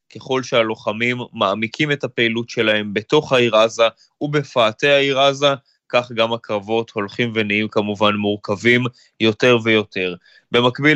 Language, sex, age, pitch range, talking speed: Hebrew, male, 20-39, 115-130 Hz, 120 wpm